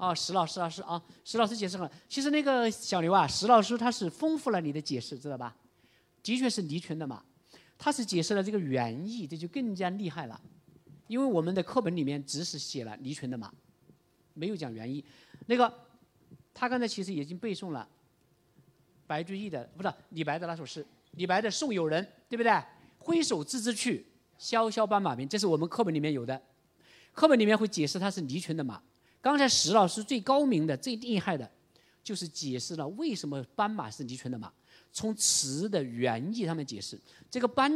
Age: 50-69